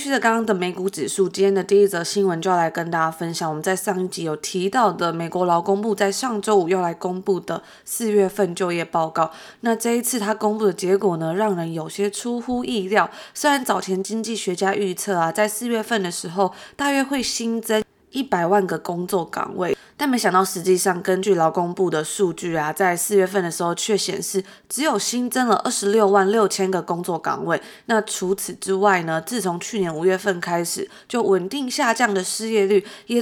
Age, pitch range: 20-39, 185-225 Hz